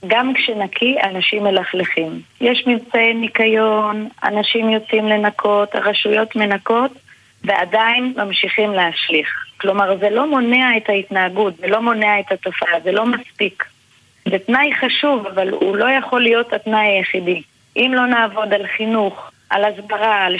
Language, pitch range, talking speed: Hebrew, 200-245 Hz, 140 wpm